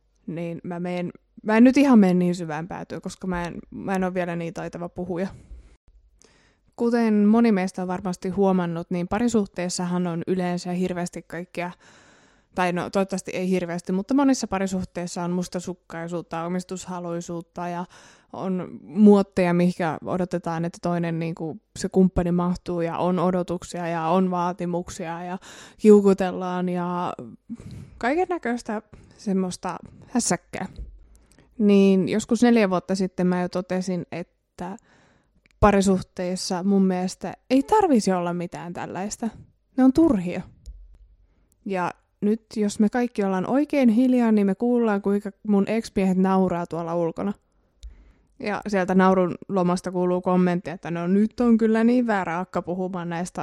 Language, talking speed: Finnish, 140 wpm